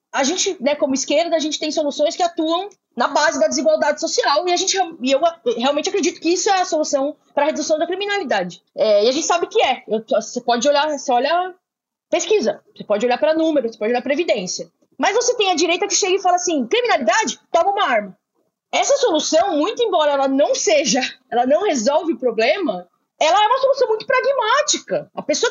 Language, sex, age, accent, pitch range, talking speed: Portuguese, female, 20-39, Brazilian, 285-370 Hz, 215 wpm